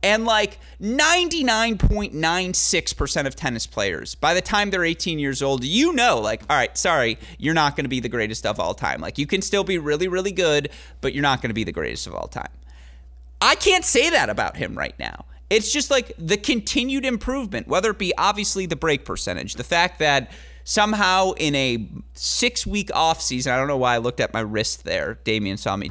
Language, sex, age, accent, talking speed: English, male, 30-49, American, 205 wpm